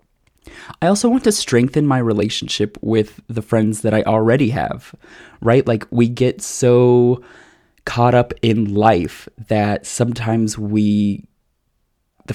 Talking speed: 130 wpm